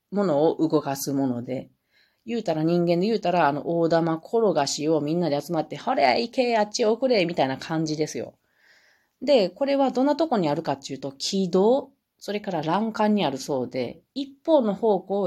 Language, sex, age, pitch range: Japanese, female, 40-59, 155-230 Hz